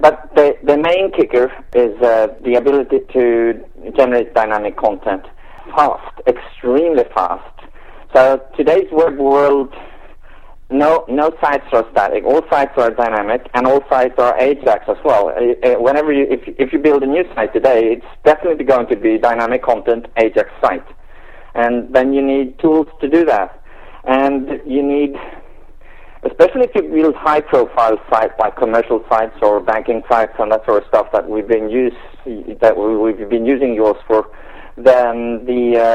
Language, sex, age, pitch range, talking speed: English, male, 50-69, 115-140 Hz, 160 wpm